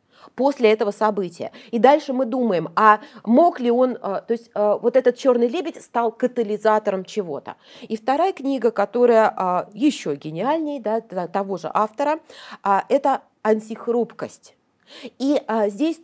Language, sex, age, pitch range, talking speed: Russian, female, 30-49, 215-280 Hz, 125 wpm